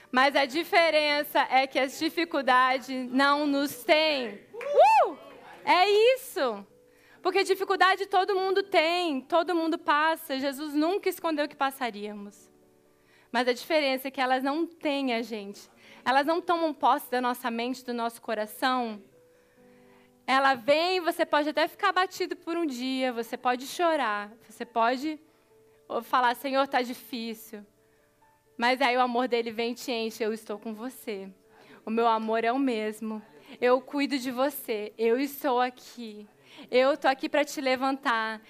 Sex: female